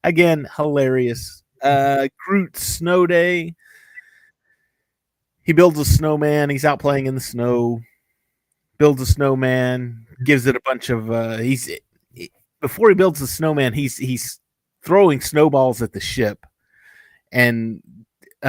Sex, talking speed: male, 130 wpm